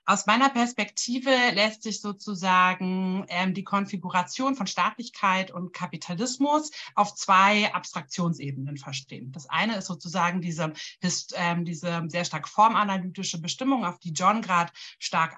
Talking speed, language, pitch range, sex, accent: 130 wpm, German, 170-215 Hz, female, German